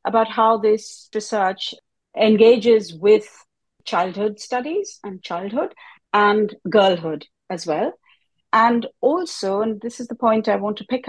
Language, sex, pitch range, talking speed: English, female, 175-235 Hz, 135 wpm